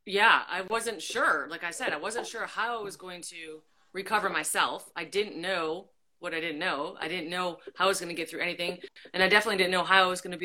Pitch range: 175-230 Hz